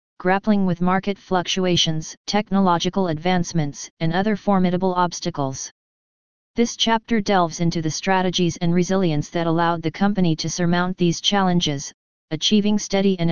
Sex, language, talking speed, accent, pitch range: female, English, 130 wpm, American, 170-195 Hz